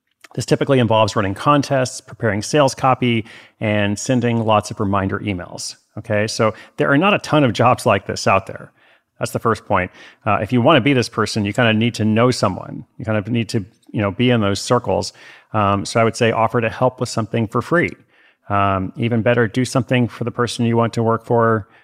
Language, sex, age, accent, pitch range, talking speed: English, male, 40-59, American, 100-125 Hz, 225 wpm